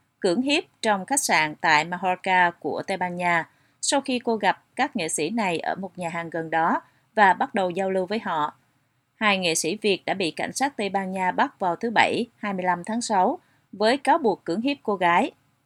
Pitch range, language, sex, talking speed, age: 170-220 Hz, Vietnamese, female, 220 wpm, 30-49